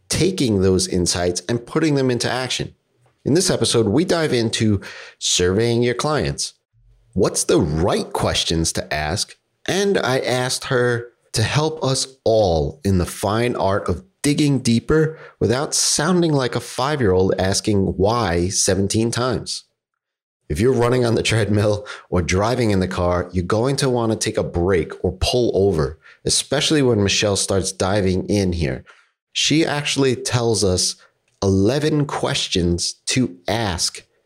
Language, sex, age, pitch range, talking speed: English, male, 30-49, 95-125 Hz, 145 wpm